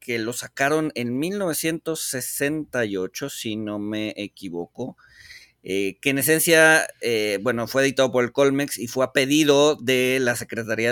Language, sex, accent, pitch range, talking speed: Spanish, male, Mexican, 110-140 Hz, 150 wpm